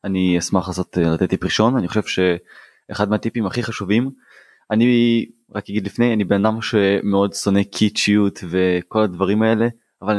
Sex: male